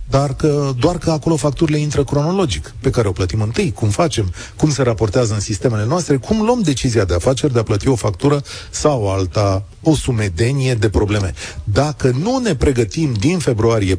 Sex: male